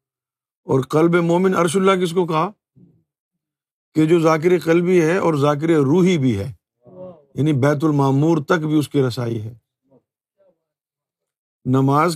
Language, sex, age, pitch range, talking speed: Urdu, male, 50-69, 130-165 Hz, 140 wpm